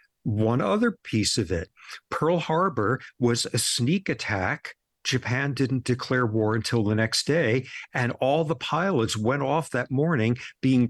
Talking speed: 155 wpm